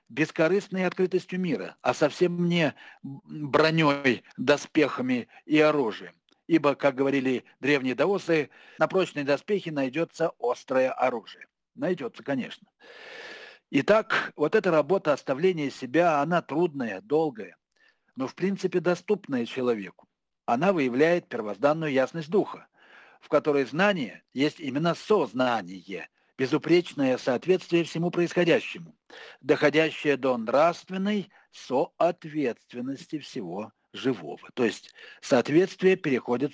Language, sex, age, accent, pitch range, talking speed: Russian, male, 60-79, native, 135-180 Hz, 100 wpm